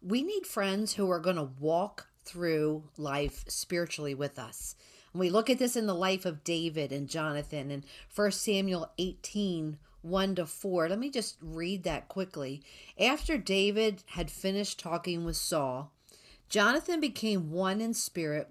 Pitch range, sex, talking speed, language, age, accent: 150-190 Hz, female, 160 wpm, English, 50-69, American